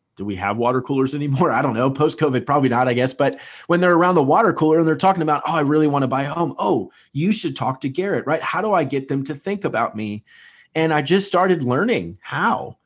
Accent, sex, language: American, male, English